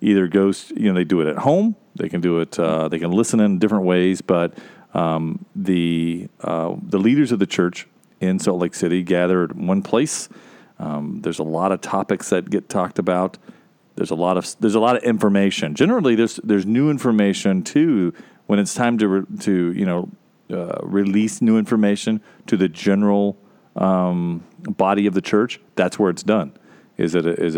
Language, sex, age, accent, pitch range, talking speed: English, male, 40-59, American, 85-105 Hz, 195 wpm